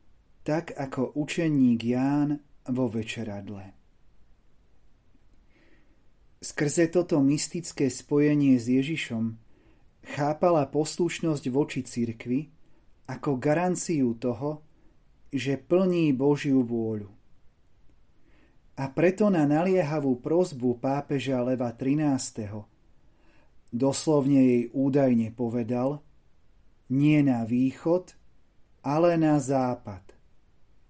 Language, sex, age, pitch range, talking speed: Slovak, male, 30-49, 125-155 Hz, 80 wpm